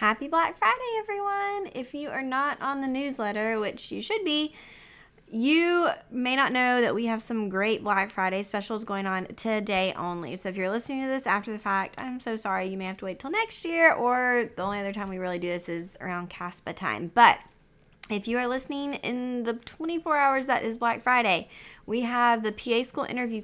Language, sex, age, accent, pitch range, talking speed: English, female, 20-39, American, 190-255 Hz, 215 wpm